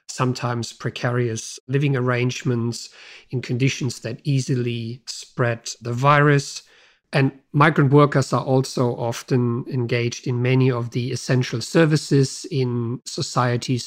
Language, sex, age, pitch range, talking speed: English, male, 50-69, 120-130 Hz, 110 wpm